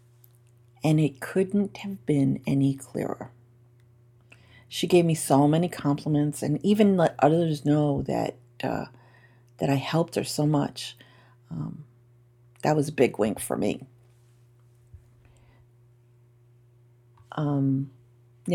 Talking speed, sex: 115 wpm, female